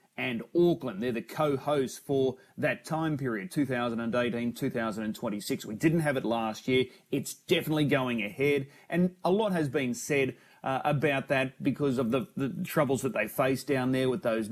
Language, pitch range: English, 120-150 Hz